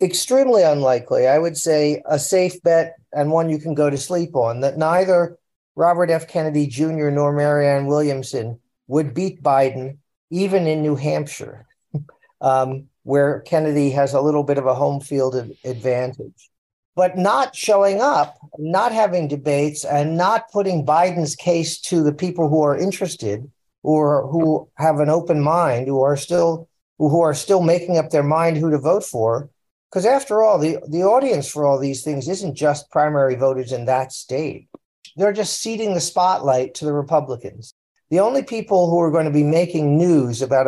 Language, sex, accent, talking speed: English, male, American, 175 wpm